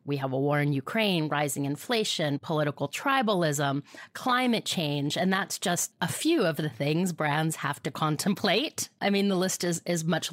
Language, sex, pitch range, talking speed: English, female, 155-205 Hz, 180 wpm